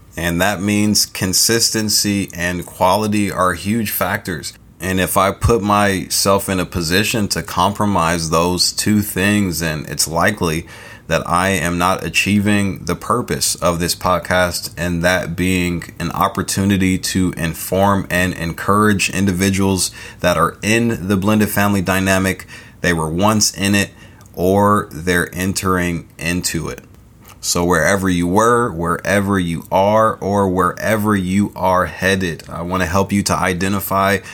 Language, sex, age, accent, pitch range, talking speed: English, male, 30-49, American, 90-105 Hz, 140 wpm